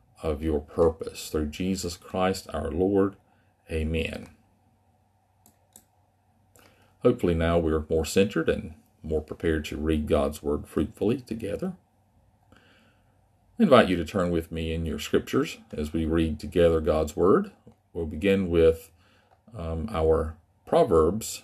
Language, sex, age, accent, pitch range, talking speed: English, male, 40-59, American, 80-105 Hz, 130 wpm